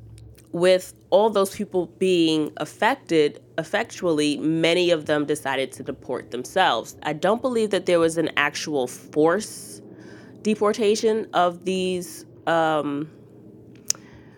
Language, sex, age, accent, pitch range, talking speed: English, female, 20-39, American, 135-165 Hz, 115 wpm